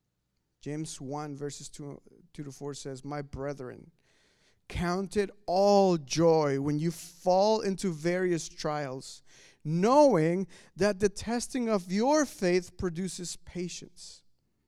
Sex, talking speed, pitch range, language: male, 115 wpm, 140-185 Hz, English